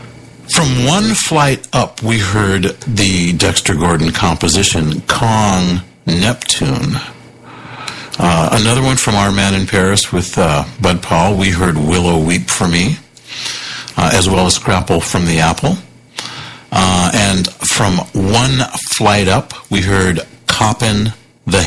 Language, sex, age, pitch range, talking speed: English, male, 60-79, 95-125 Hz, 135 wpm